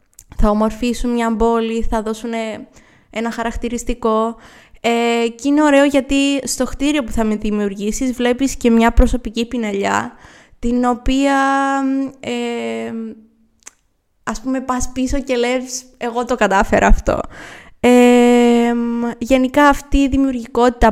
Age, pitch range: 20-39, 210-245 Hz